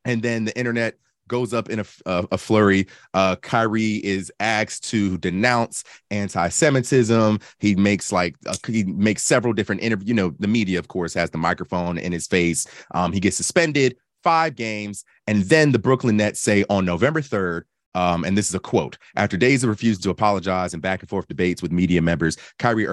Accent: American